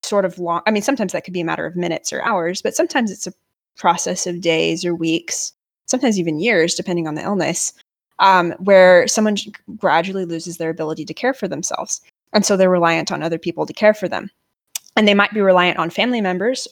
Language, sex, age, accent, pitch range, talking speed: English, female, 20-39, American, 165-200 Hz, 220 wpm